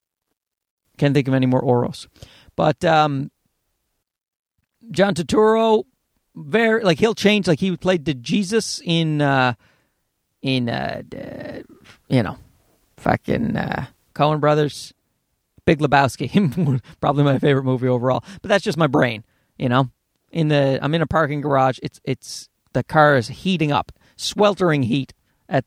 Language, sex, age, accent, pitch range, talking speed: English, male, 40-59, American, 135-185 Hz, 145 wpm